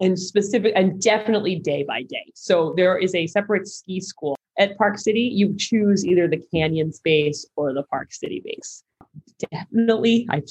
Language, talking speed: English, 170 wpm